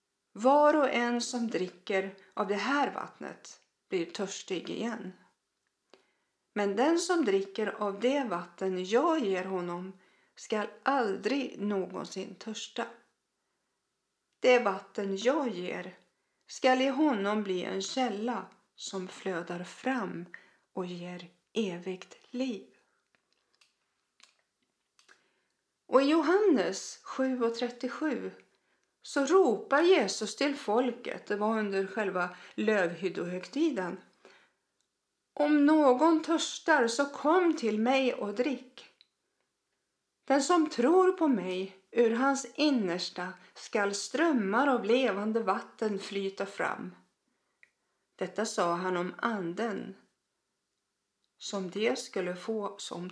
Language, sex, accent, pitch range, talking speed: Swedish, female, native, 195-270 Hz, 105 wpm